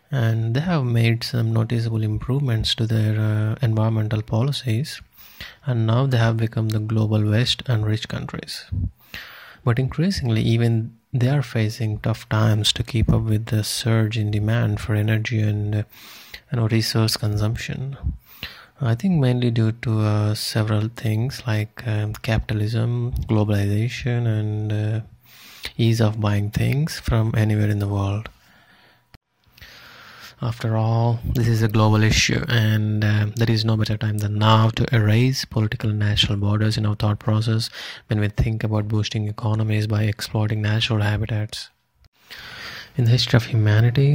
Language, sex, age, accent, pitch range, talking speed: English, male, 30-49, Indian, 110-120 Hz, 150 wpm